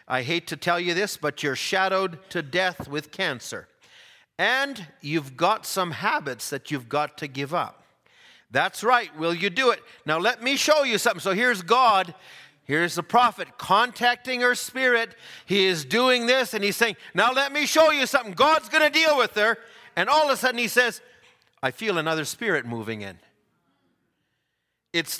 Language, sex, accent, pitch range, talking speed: English, male, American, 155-235 Hz, 185 wpm